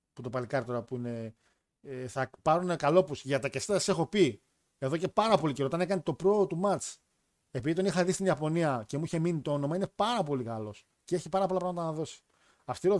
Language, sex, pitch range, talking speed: Greek, male, 130-170 Hz, 220 wpm